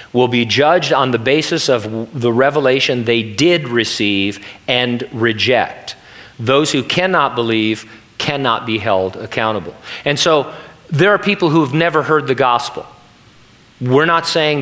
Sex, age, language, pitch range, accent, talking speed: male, 40-59, English, 115-145 Hz, American, 150 wpm